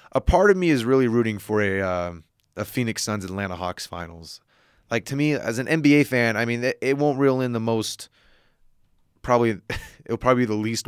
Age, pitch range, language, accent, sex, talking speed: 20-39, 90-110 Hz, English, American, male, 205 wpm